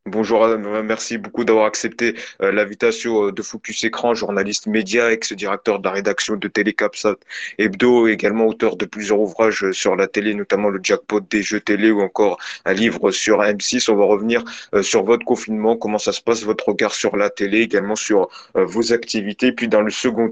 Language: French